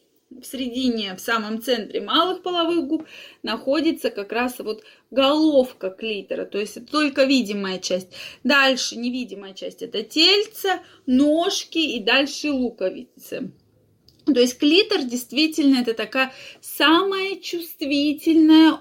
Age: 20-39